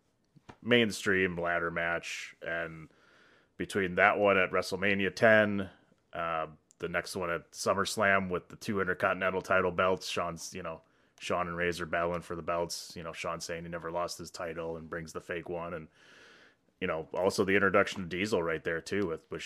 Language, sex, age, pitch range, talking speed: English, male, 30-49, 85-95 Hz, 180 wpm